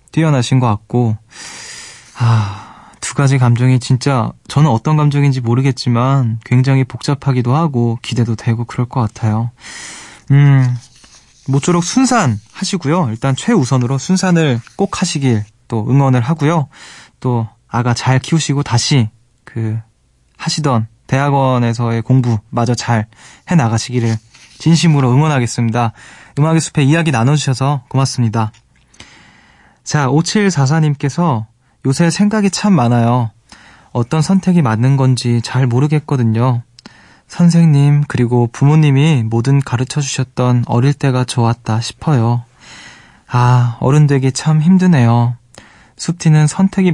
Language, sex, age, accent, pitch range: Korean, male, 20-39, native, 120-150 Hz